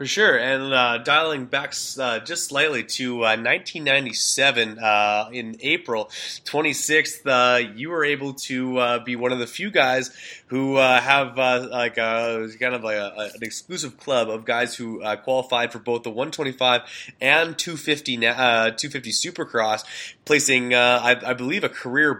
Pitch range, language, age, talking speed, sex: 110-140 Hz, English, 20-39, 170 wpm, male